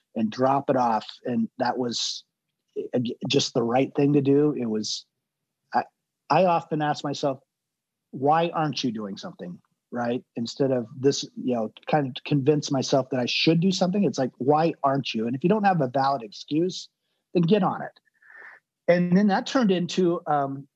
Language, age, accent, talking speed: English, 40-59, American, 180 wpm